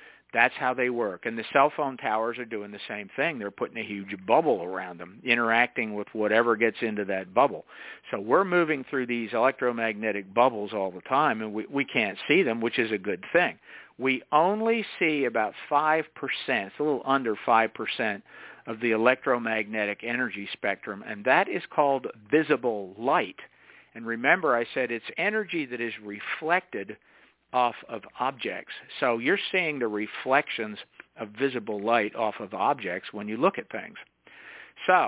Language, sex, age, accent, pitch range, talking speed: English, male, 50-69, American, 110-140 Hz, 170 wpm